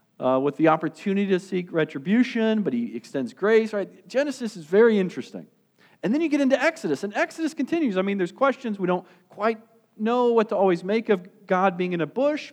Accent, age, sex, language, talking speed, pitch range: American, 40-59, male, English, 205 wpm, 155-225 Hz